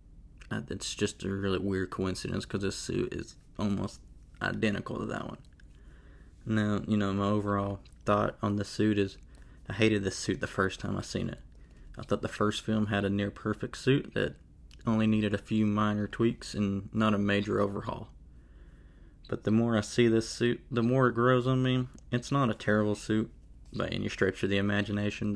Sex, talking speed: male, 190 wpm